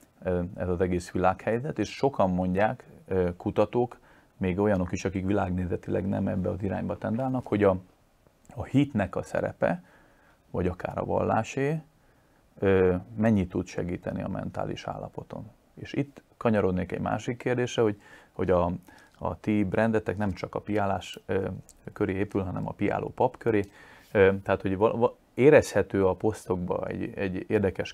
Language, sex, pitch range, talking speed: Hungarian, male, 95-115 Hz, 140 wpm